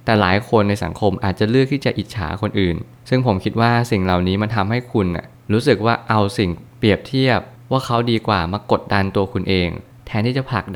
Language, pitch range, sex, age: Thai, 95-115 Hz, male, 20-39